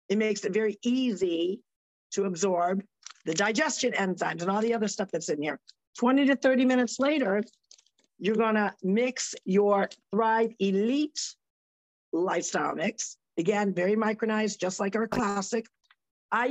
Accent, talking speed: American, 145 wpm